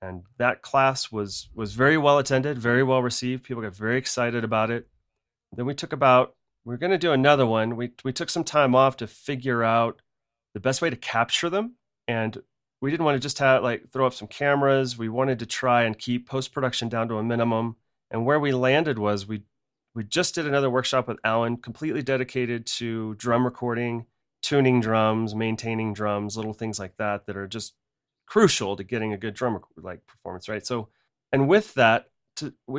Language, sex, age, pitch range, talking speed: English, male, 30-49, 110-135 Hz, 200 wpm